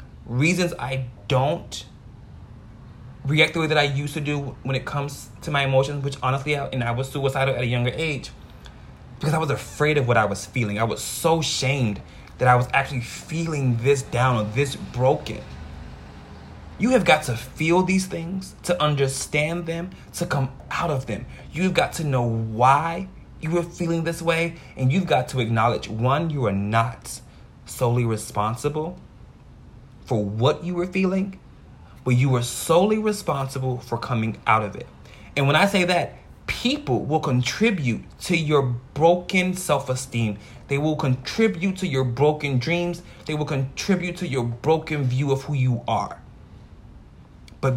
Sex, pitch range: male, 120-160 Hz